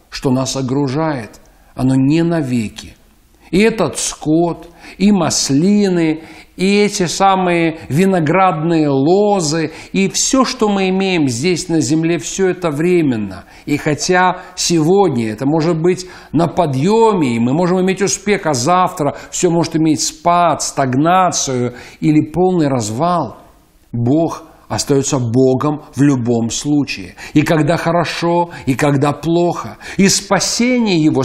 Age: 50-69